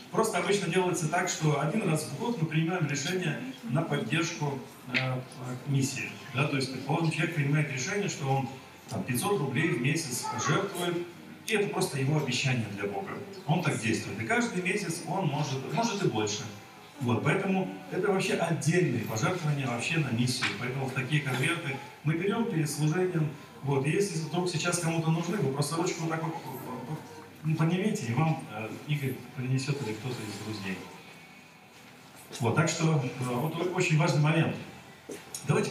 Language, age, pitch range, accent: Russian, 40-59, 130-175 Hz, native